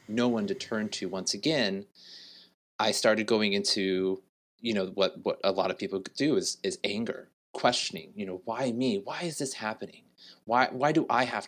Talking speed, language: 195 wpm, English